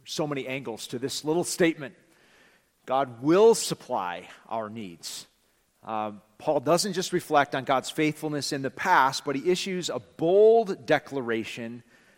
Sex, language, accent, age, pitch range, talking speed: male, English, American, 40-59, 125-170 Hz, 145 wpm